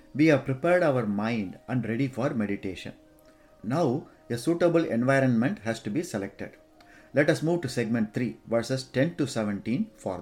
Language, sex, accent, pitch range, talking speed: English, male, Indian, 110-150 Hz, 165 wpm